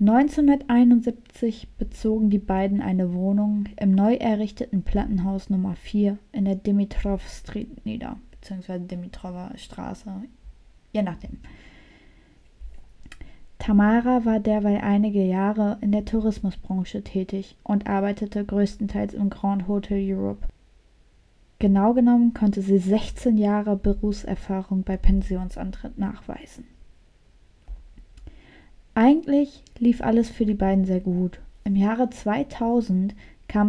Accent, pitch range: German, 195-220 Hz